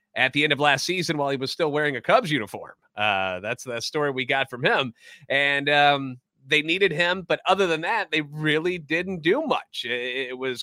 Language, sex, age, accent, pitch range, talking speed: English, male, 30-49, American, 125-155 Hz, 215 wpm